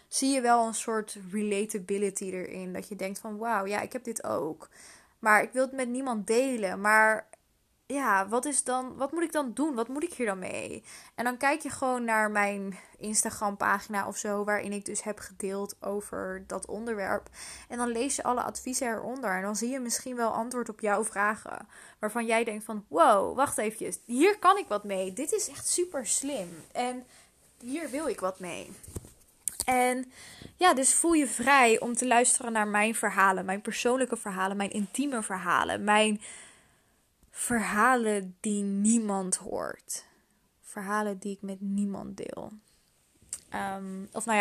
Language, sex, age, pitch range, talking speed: Dutch, female, 20-39, 200-245 Hz, 175 wpm